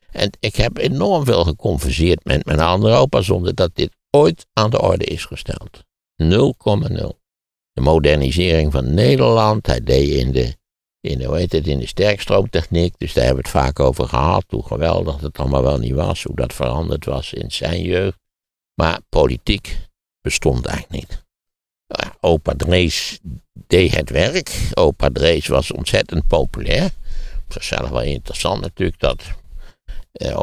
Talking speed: 160 wpm